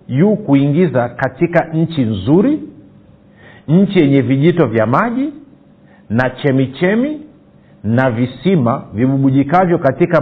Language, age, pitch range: Swahili, 50-69, 130-175 Hz